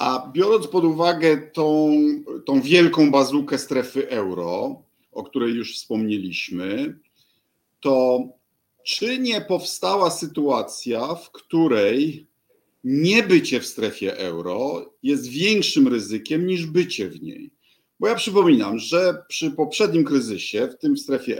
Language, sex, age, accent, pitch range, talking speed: Polish, male, 50-69, native, 140-215 Hz, 125 wpm